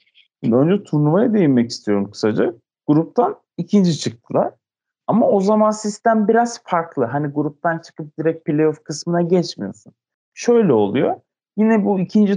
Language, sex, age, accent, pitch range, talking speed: Turkish, male, 30-49, native, 125-205 Hz, 125 wpm